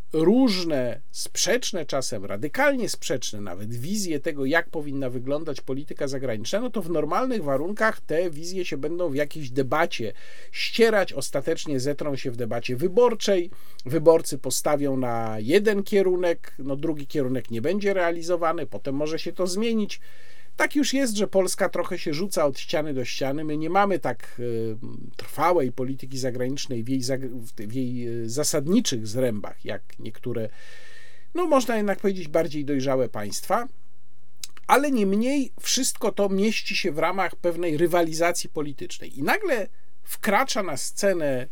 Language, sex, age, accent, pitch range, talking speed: Polish, male, 50-69, native, 130-200 Hz, 140 wpm